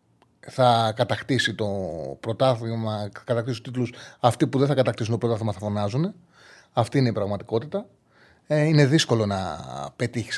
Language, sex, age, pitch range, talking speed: Greek, male, 30-49, 110-145 Hz, 145 wpm